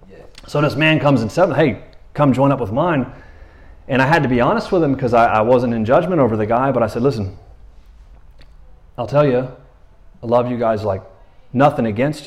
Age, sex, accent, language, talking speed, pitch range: 30-49, male, American, English, 210 wpm, 100-120 Hz